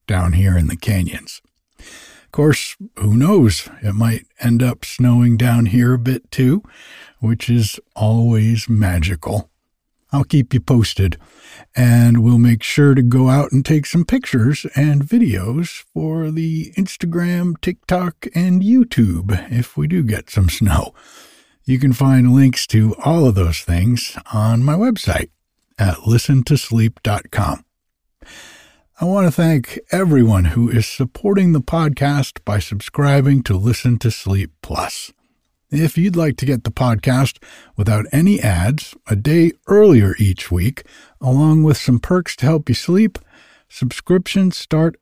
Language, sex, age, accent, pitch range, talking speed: English, male, 60-79, American, 110-155 Hz, 145 wpm